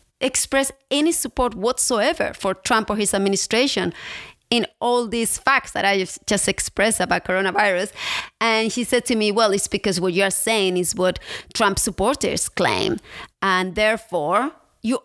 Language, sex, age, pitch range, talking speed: English, female, 30-49, 195-245 Hz, 150 wpm